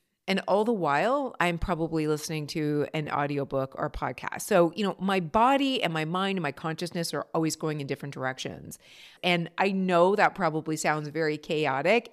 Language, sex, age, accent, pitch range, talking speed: English, female, 40-59, American, 165-230 Hz, 185 wpm